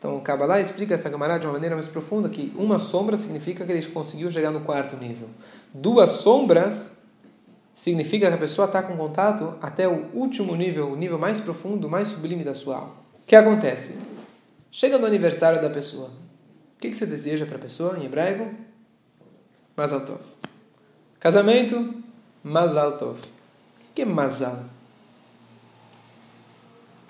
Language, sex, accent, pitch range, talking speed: Portuguese, male, Brazilian, 145-225 Hz, 165 wpm